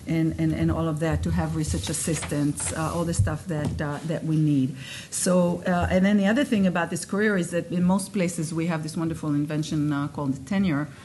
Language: English